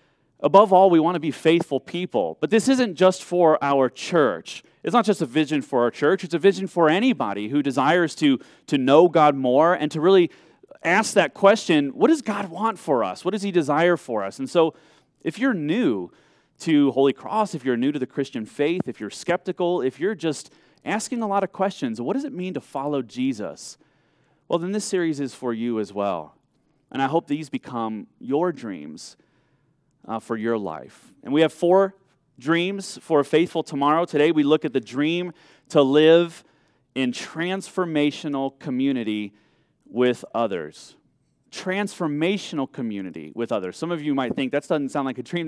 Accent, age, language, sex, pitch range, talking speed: American, 30-49, English, male, 135-180 Hz, 190 wpm